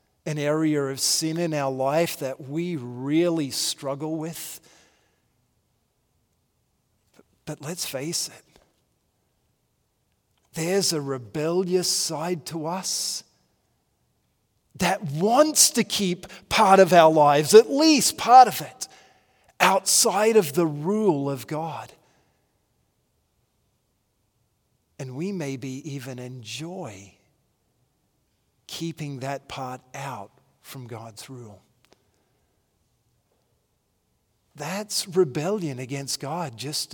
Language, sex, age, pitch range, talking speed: English, male, 40-59, 130-170 Hz, 95 wpm